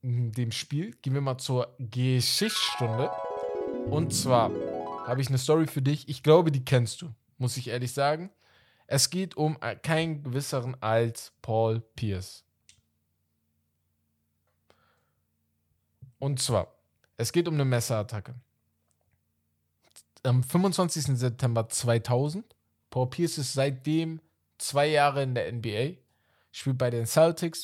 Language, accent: German, German